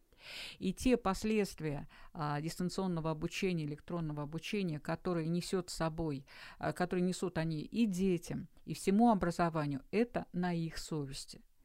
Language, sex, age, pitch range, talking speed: Russian, female, 50-69, 160-210 Hz, 125 wpm